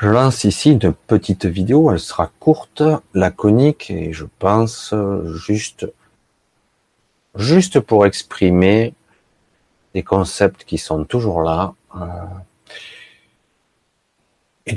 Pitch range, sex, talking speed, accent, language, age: 90-110 Hz, male, 100 wpm, French, French, 40-59